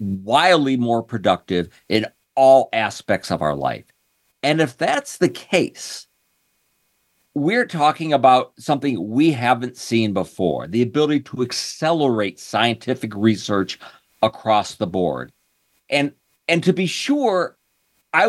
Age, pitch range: 50-69, 115-165 Hz